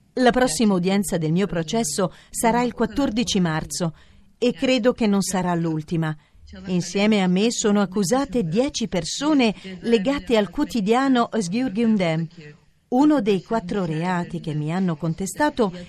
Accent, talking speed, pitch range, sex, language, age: native, 135 wpm, 185-260 Hz, female, Italian, 40-59